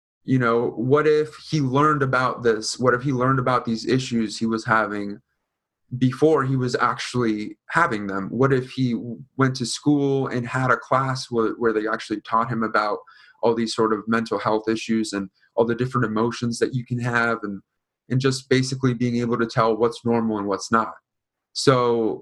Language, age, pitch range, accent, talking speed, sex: English, 30-49, 110-130 Hz, American, 190 wpm, male